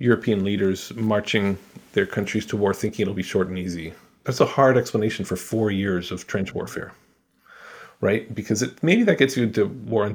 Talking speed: 195 wpm